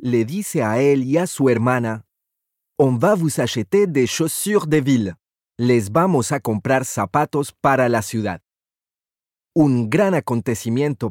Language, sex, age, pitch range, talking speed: Spanish, male, 30-49, 110-150 Hz, 145 wpm